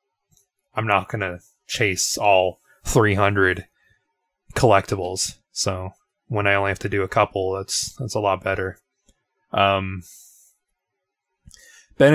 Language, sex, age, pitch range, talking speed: English, male, 20-39, 100-115 Hz, 120 wpm